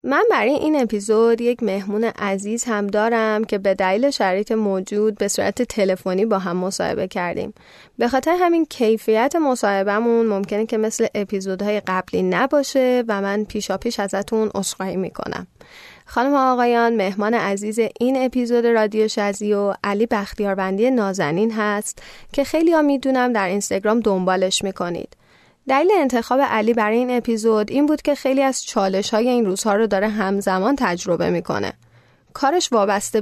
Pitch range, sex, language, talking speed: 200-255 Hz, female, Persian, 145 wpm